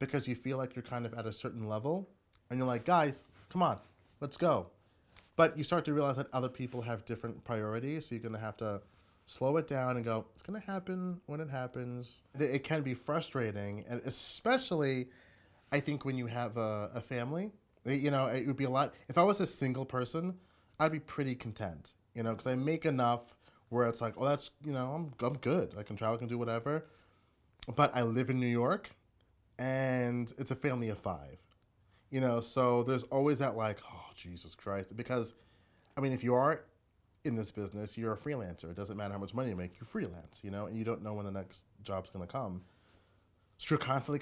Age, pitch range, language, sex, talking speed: 30-49, 105-140 Hz, English, male, 215 wpm